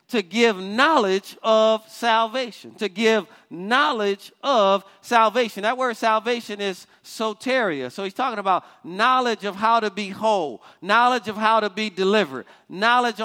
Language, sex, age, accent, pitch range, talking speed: English, male, 40-59, American, 195-240 Hz, 145 wpm